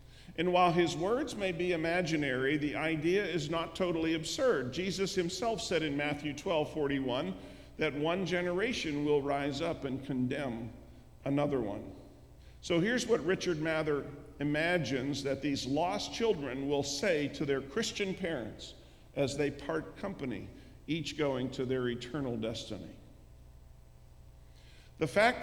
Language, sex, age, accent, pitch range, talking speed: English, male, 50-69, American, 135-165 Hz, 135 wpm